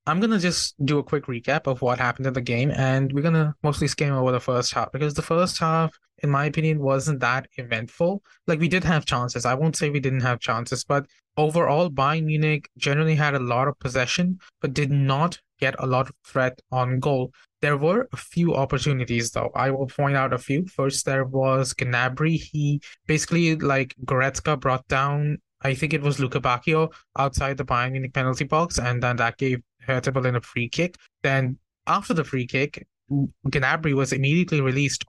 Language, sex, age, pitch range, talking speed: English, male, 20-39, 130-150 Hz, 200 wpm